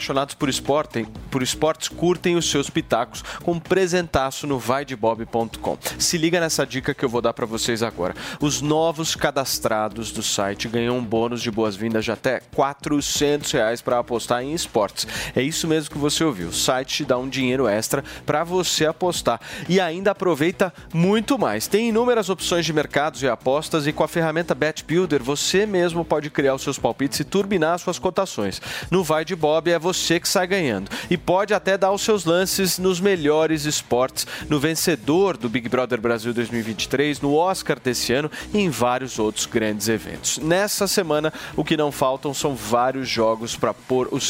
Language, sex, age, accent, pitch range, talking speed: Portuguese, male, 30-49, Brazilian, 130-175 Hz, 180 wpm